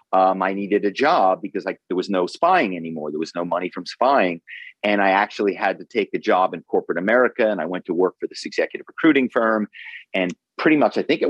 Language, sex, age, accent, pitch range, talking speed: English, male, 40-59, American, 95-120 Hz, 235 wpm